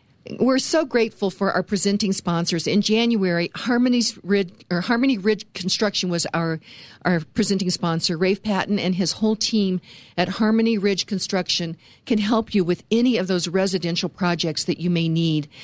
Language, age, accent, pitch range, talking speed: English, 50-69, American, 170-215 Hz, 160 wpm